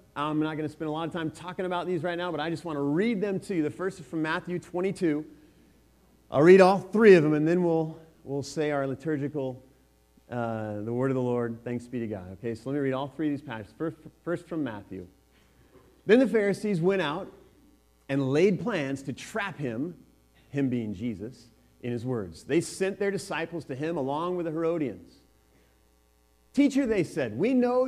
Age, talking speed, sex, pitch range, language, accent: 40-59, 210 wpm, male, 115-180 Hz, English, American